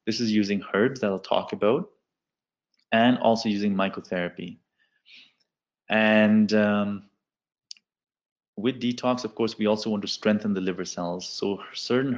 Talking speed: 140 wpm